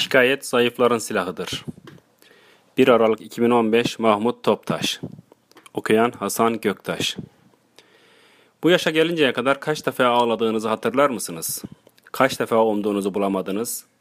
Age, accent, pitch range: 40-59, native, 115-160 Hz